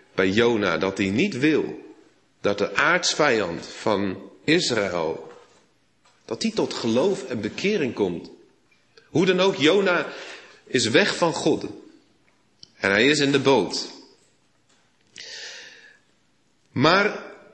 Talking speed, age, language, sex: 110 wpm, 40-59, Dutch, male